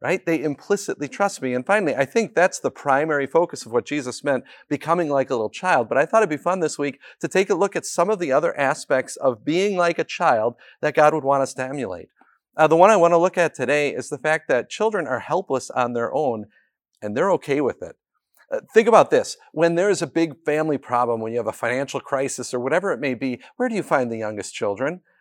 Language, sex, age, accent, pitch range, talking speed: English, male, 40-59, American, 150-220 Hz, 250 wpm